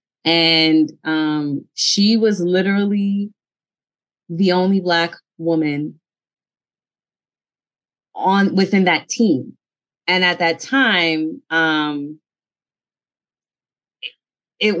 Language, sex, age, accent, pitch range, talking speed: English, female, 20-39, American, 155-190 Hz, 75 wpm